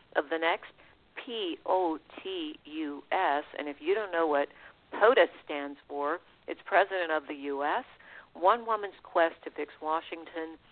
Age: 50-69